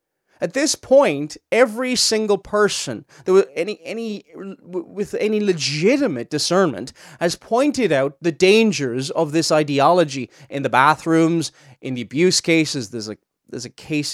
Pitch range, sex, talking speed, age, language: 135-185 Hz, male, 140 wpm, 20-39, English